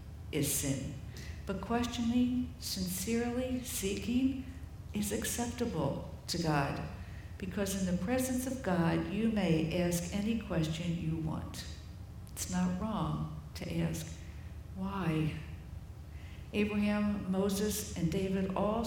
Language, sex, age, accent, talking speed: English, female, 60-79, American, 110 wpm